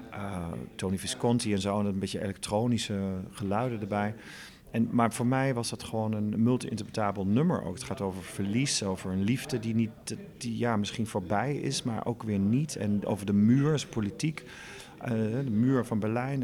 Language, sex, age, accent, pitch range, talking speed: Dutch, male, 40-59, Dutch, 100-120 Hz, 185 wpm